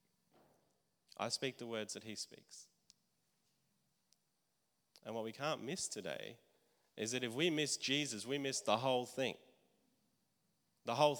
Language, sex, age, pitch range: English, male, 30-49, 115-145 Hz